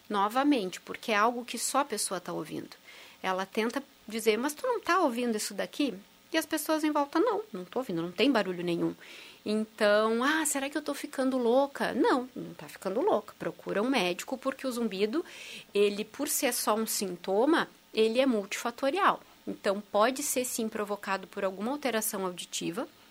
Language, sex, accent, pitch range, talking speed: Portuguese, female, Brazilian, 205-270 Hz, 180 wpm